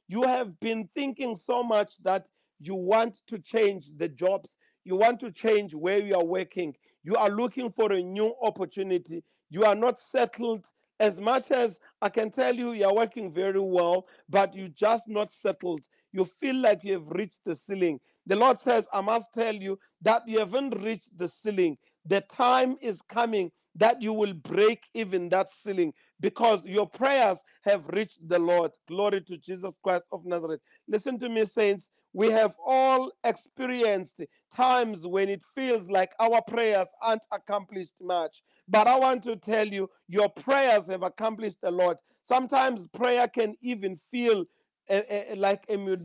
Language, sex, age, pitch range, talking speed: English, male, 40-59, 190-230 Hz, 170 wpm